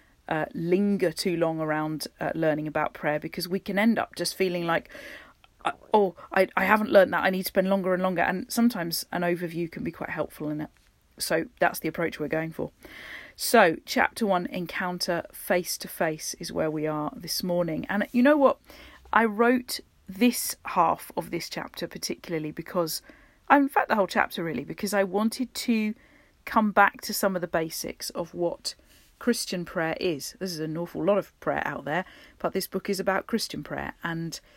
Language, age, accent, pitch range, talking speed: English, 40-59, British, 170-225 Hz, 195 wpm